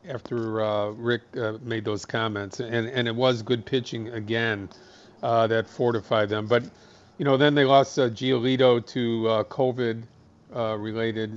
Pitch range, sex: 110-130 Hz, male